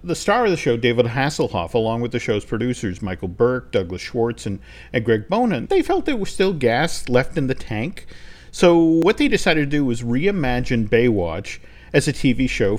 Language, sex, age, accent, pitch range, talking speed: English, male, 50-69, American, 115-150 Hz, 200 wpm